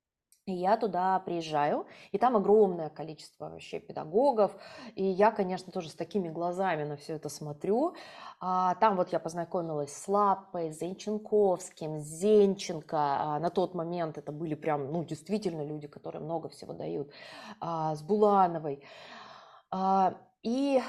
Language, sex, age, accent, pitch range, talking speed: Russian, female, 20-39, native, 170-215 Hz, 130 wpm